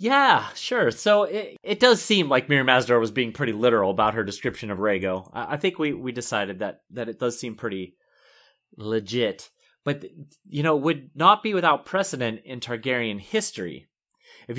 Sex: male